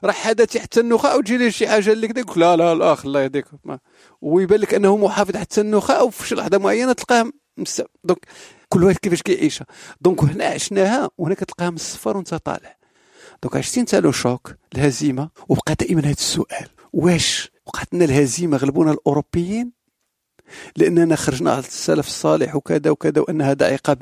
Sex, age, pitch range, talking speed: male, 50-69, 145-200 Hz, 155 wpm